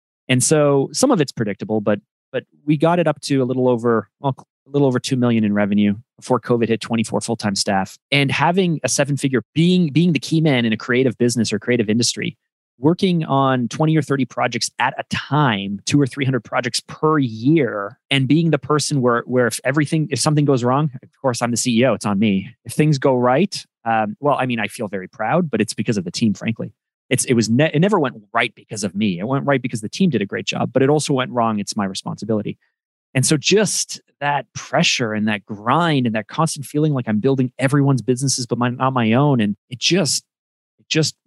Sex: male